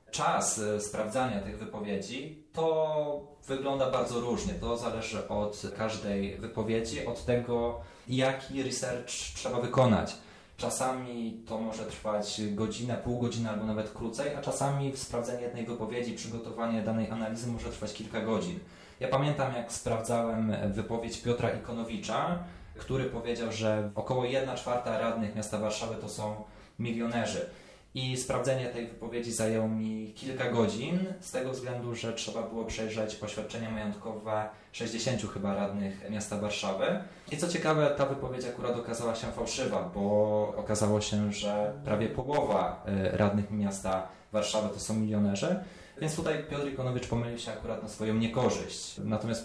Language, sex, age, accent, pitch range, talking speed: Polish, male, 20-39, native, 105-125 Hz, 135 wpm